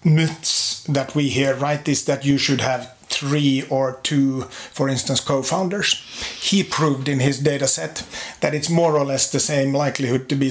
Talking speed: 185 wpm